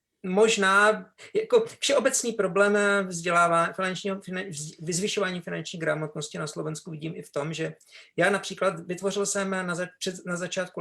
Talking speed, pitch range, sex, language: 135 wpm, 165-195 Hz, male, Slovak